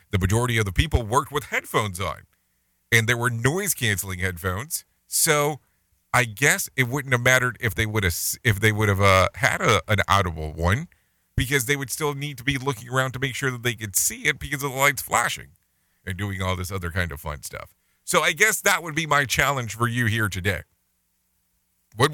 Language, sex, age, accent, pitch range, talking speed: English, male, 40-59, American, 95-135 Hz, 215 wpm